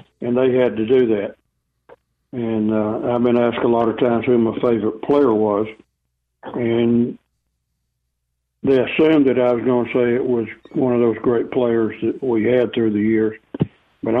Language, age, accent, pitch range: English, 60-79, American, 110-130 Hz